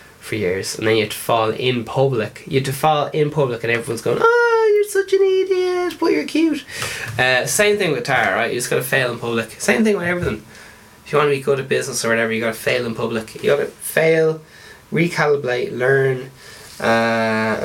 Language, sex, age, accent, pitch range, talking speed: English, male, 10-29, Irish, 120-180 Hz, 230 wpm